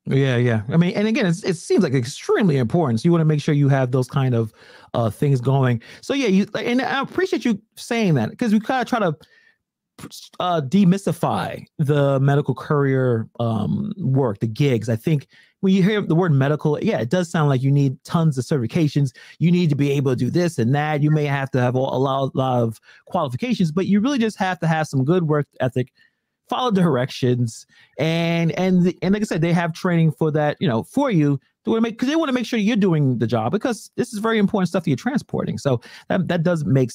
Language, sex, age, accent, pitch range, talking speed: English, male, 30-49, American, 135-190 Hz, 230 wpm